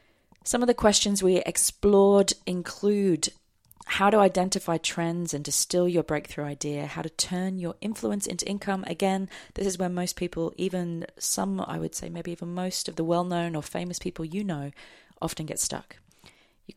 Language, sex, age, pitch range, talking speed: English, female, 30-49, 145-190 Hz, 175 wpm